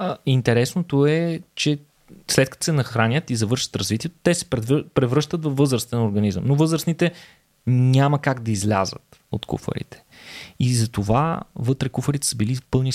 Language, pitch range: Bulgarian, 105-130 Hz